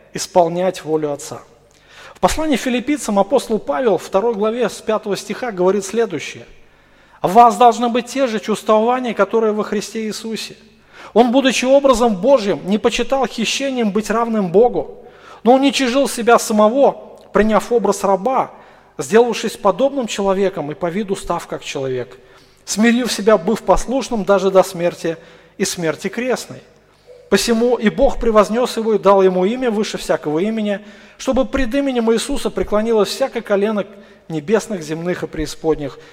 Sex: male